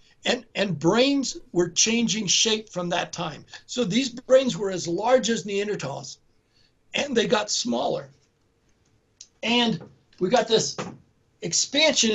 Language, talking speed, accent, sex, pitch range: English, 130 wpm, American, male, 170-240 Hz